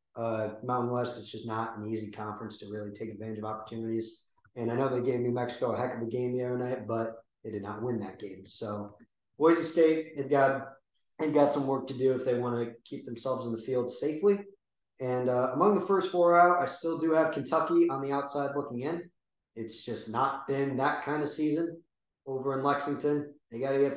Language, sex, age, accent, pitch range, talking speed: English, male, 20-39, American, 115-140 Hz, 225 wpm